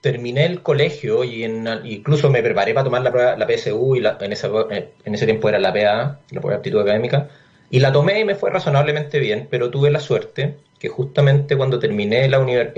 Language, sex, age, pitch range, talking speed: Spanish, male, 30-49, 125-150 Hz, 220 wpm